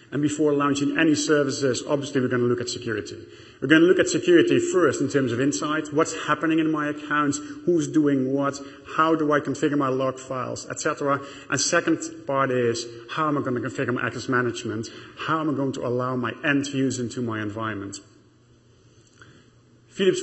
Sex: male